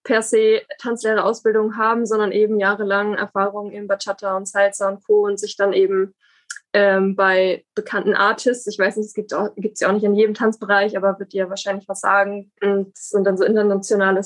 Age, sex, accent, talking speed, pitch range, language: 20-39, female, German, 195 wpm, 195-220 Hz, German